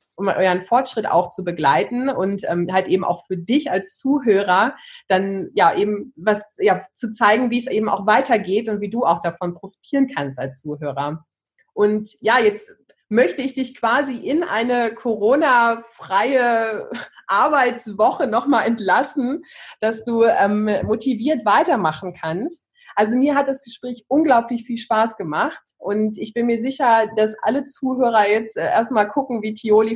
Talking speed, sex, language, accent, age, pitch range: 155 wpm, female, German, German, 20-39, 200-245 Hz